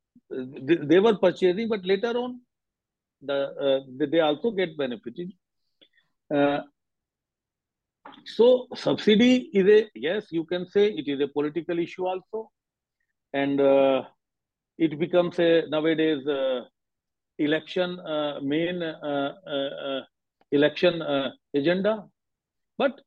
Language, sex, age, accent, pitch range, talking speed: English, male, 50-69, Indian, 150-215 Hz, 110 wpm